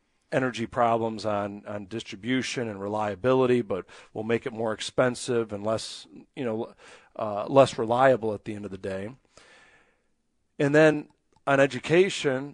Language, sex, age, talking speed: English, male, 50-69, 145 wpm